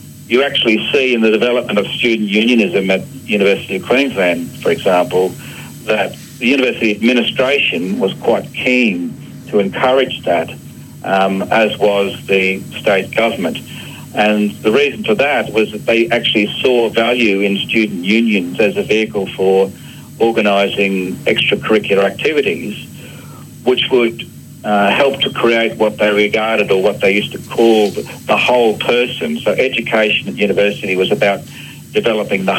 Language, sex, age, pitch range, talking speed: English, male, 50-69, 100-120 Hz, 145 wpm